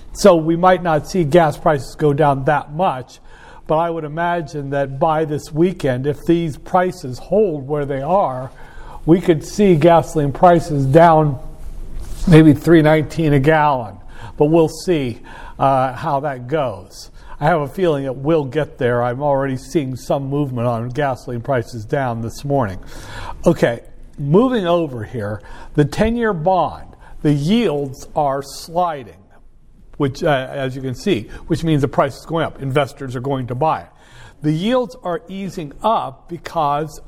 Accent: American